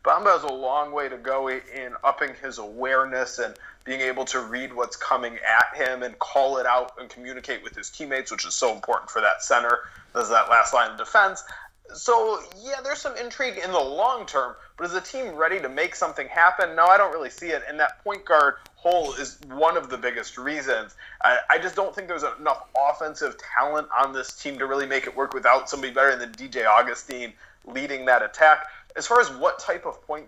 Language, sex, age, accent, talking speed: English, male, 20-39, American, 215 wpm